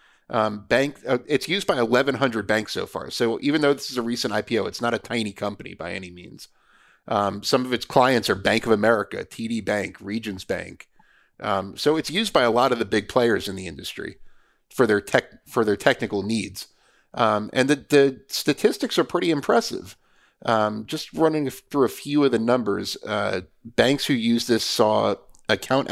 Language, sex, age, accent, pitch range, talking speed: English, male, 30-49, American, 105-135 Hz, 195 wpm